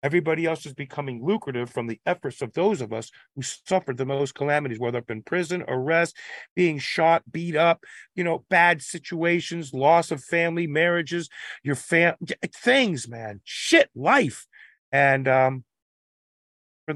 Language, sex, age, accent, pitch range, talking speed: English, male, 40-59, American, 135-175 Hz, 150 wpm